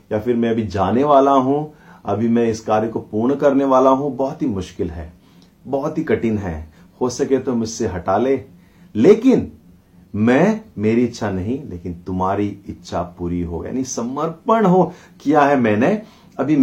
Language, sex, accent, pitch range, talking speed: Hindi, male, native, 95-150 Hz, 170 wpm